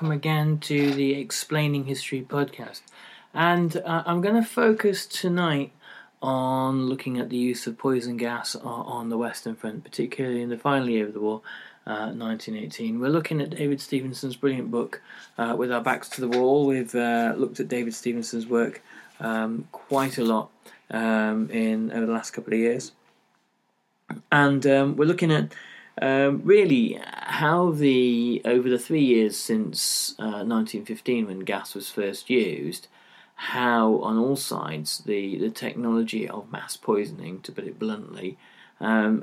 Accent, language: British, English